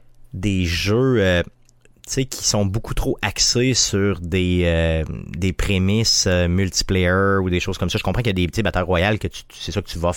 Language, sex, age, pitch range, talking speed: French, male, 30-49, 90-110 Hz, 220 wpm